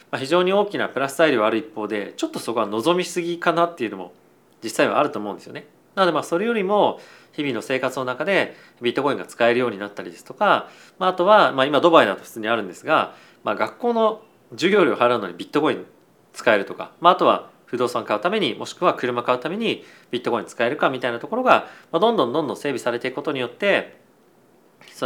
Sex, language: male, Japanese